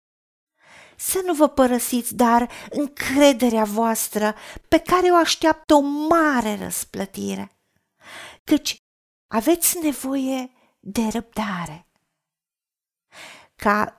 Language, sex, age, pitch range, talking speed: Romanian, female, 40-59, 200-285 Hz, 85 wpm